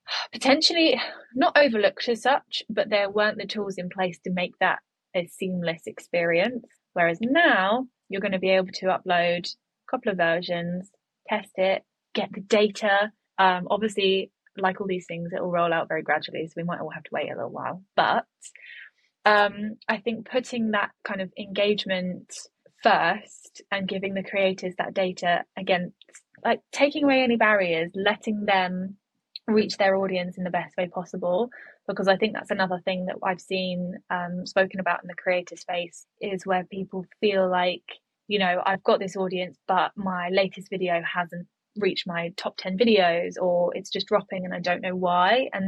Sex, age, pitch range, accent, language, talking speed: female, 10-29, 180-215 Hz, British, English, 180 wpm